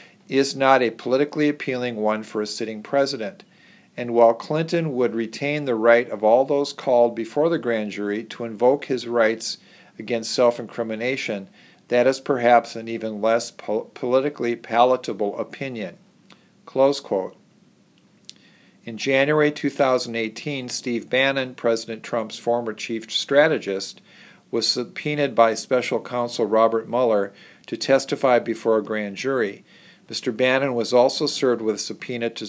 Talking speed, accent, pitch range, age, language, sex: 135 wpm, American, 110-135 Hz, 50-69, English, male